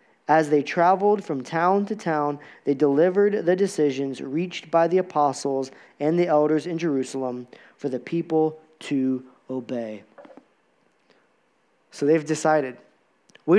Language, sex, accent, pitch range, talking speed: English, male, American, 160-220 Hz, 130 wpm